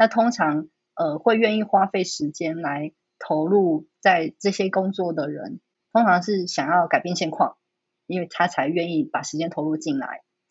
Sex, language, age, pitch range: female, Chinese, 20-39, 160-200 Hz